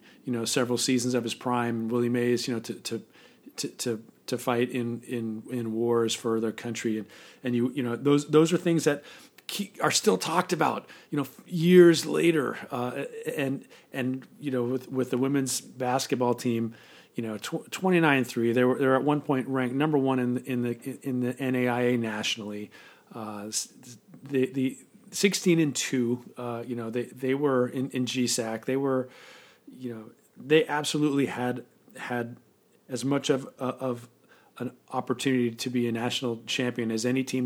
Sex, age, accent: male, 40-59, American